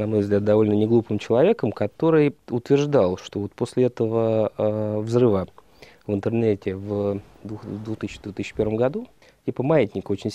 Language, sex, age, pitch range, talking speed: Russian, male, 20-39, 100-130 Hz, 135 wpm